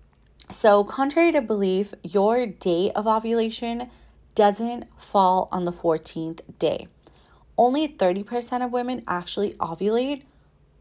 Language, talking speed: English, 110 wpm